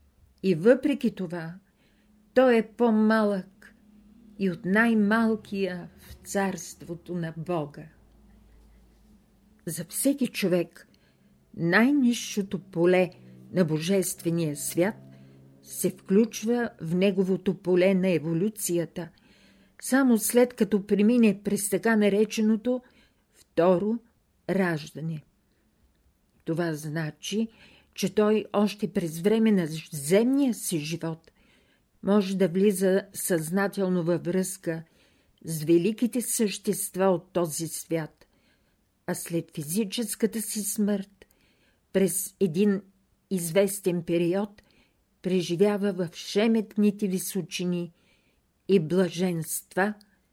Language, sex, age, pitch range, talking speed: Bulgarian, female, 50-69, 170-210 Hz, 90 wpm